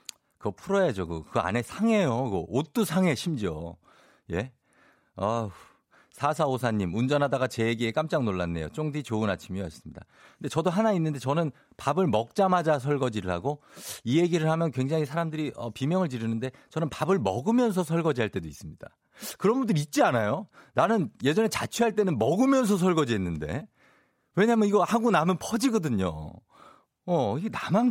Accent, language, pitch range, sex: native, Korean, 115-180 Hz, male